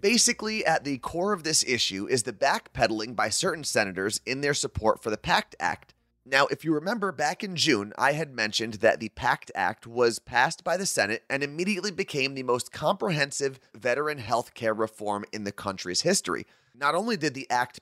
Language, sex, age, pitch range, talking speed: English, male, 30-49, 115-165 Hz, 195 wpm